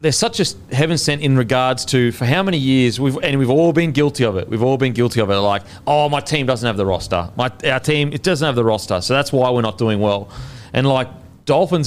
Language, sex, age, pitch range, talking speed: English, male, 30-49, 105-130 Hz, 270 wpm